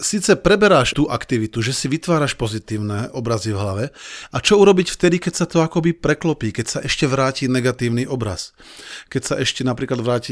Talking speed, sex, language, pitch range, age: 180 wpm, male, Slovak, 115-145 Hz, 40-59